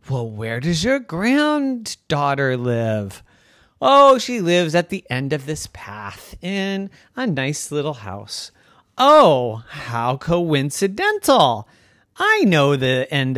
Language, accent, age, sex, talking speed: English, American, 30-49, male, 120 wpm